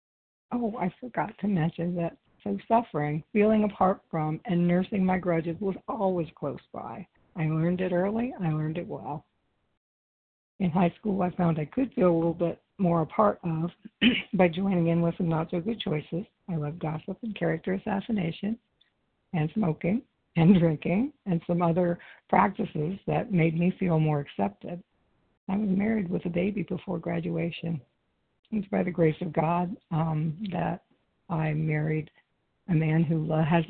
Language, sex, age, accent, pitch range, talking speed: English, female, 60-79, American, 160-195 Hz, 165 wpm